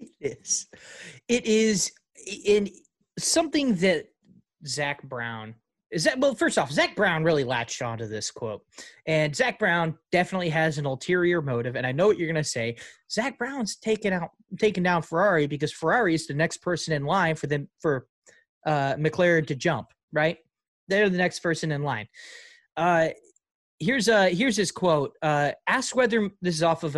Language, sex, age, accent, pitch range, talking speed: English, male, 30-49, American, 145-195 Hz, 175 wpm